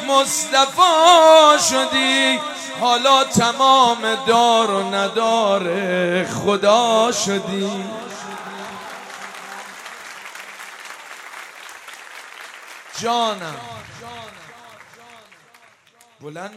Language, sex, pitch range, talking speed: Persian, male, 150-205 Hz, 40 wpm